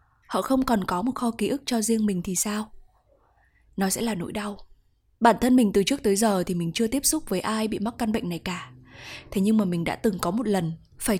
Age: 20-39